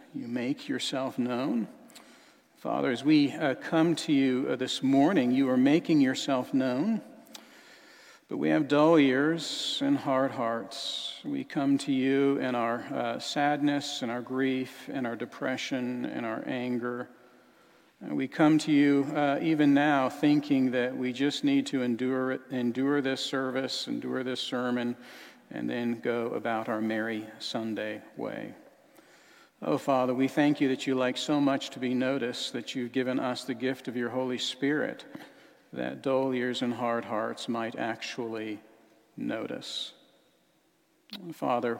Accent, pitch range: American, 120-145 Hz